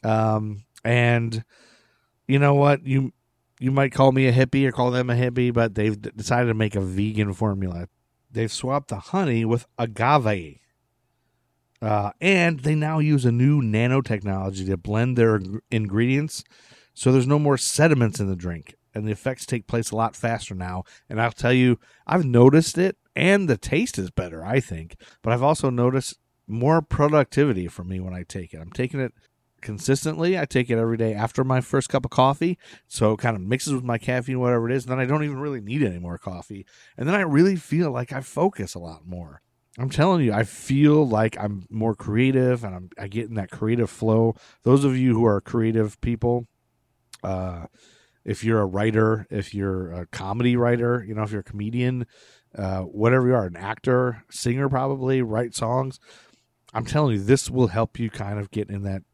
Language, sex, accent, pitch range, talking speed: English, male, American, 105-135 Hz, 200 wpm